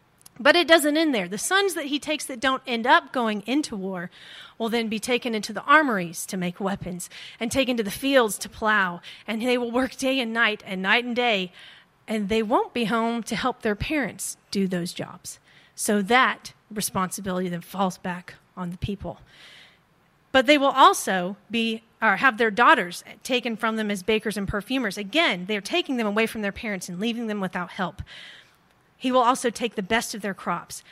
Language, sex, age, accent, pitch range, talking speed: English, female, 30-49, American, 195-265 Hz, 200 wpm